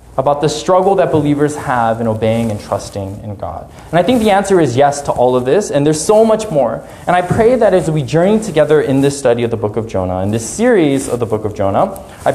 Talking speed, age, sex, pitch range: 260 wpm, 20-39, male, 115-180 Hz